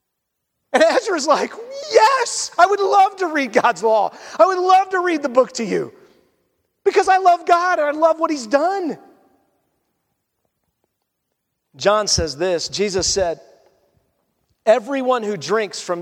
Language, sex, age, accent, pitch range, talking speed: English, male, 40-59, American, 155-215 Hz, 145 wpm